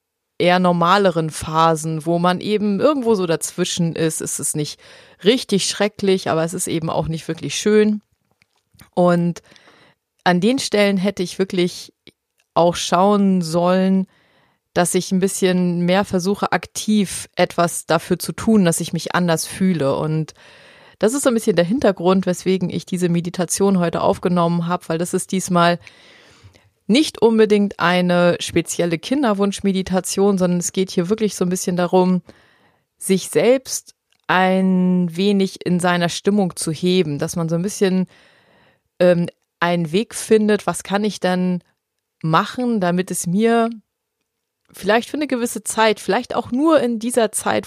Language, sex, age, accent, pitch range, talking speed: German, female, 30-49, German, 175-205 Hz, 150 wpm